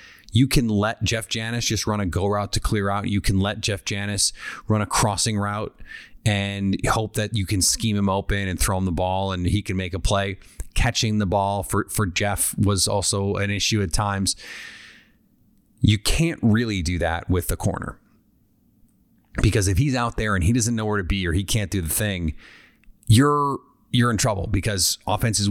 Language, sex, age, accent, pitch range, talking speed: English, male, 30-49, American, 95-115 Hz, 200 wpm